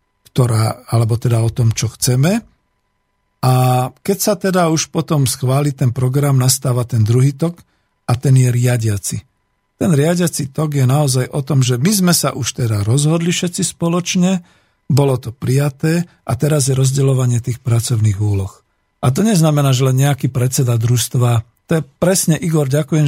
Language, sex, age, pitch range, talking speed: Slovak, male, 50-69, 125-155 Hz, 165 wpm